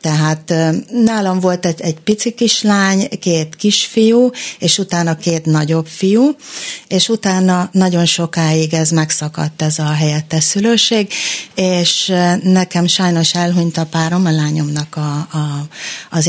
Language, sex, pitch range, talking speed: Hungarian, female, 165-200 Hz, 120 wpm